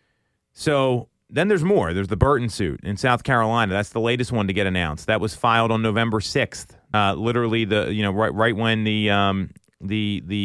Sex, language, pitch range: male, English, 105-135 Hz